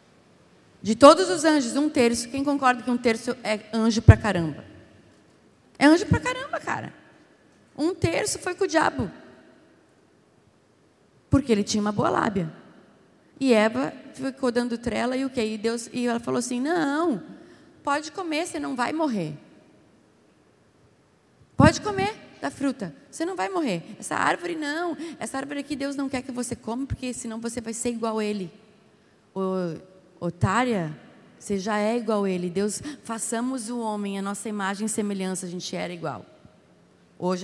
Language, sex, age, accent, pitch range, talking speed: Portuguese, female, 20-39, Brazilian, 185-255 Hz, 160 wpm